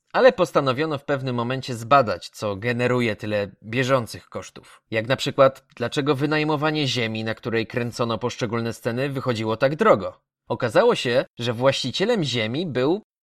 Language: Polish